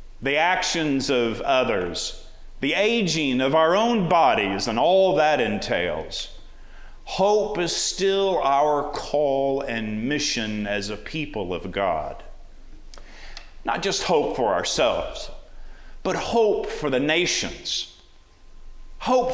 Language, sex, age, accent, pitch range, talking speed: English, male, 40-59, American, 115-185 Hz, 115 wpm